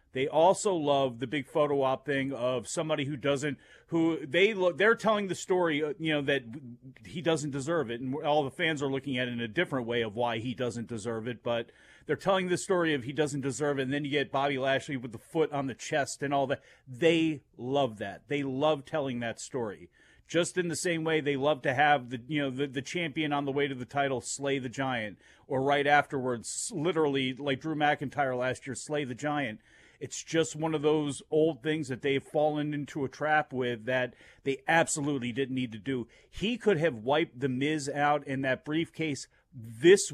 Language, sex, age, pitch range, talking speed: English, male, 40-59, 130-155 Hz, 215 wpm